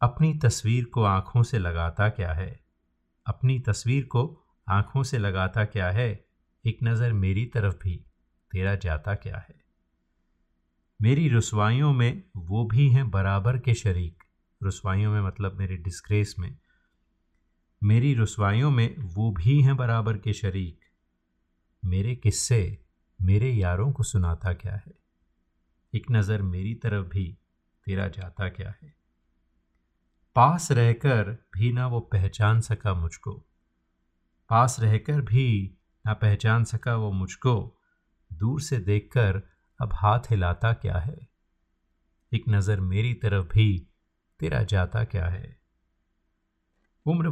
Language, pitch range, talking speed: Hindi, 85-115 Hz, 125 wpm